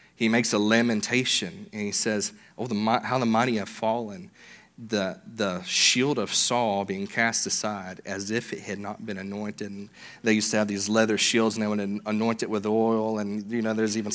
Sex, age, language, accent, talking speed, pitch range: male, 30-49, English, American, 210 wpm, 105-115 Hz